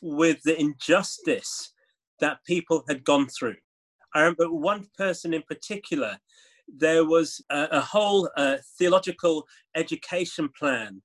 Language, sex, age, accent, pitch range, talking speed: English, male, 30-49, British, 155-195 Hz, 125 wpm